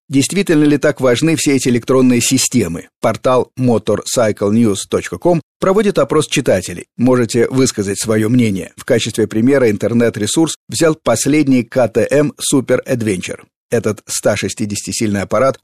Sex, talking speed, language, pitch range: male, 110 wpm, Russian, 105-145 Hz